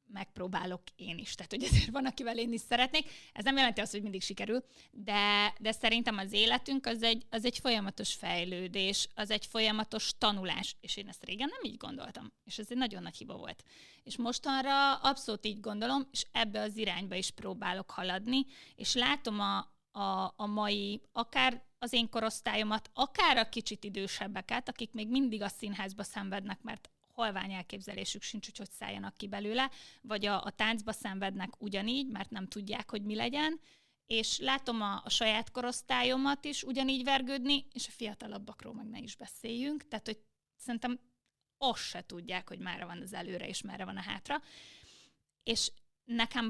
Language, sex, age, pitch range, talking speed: Hungarian, female, 20-39, 205-245 Hz, 170 wpm